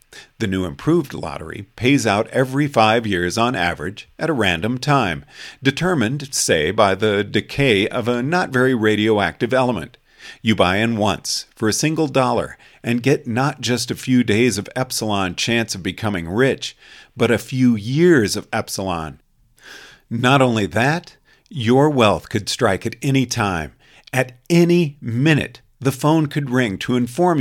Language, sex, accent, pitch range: English, male, American, 105-130 Hz